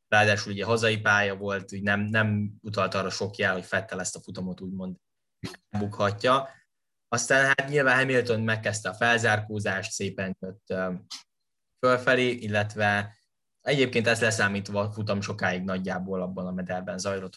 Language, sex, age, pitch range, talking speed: Hungarian, male, 10-29, 95-115 Hz, 140 wpm